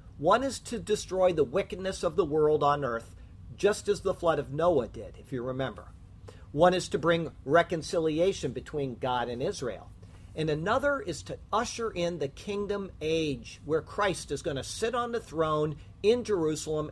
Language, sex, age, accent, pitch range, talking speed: English, male, 50-69, American, 125-200 Hz, 175 wpm